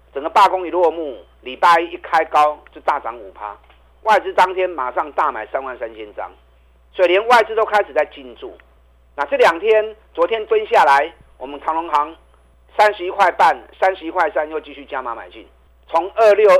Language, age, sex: Chinese, 50-69, male